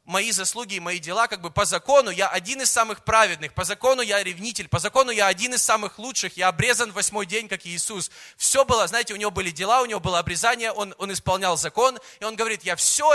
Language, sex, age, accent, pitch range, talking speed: Russian, male, 20-39, native, 170-240 Hz, 235 wpm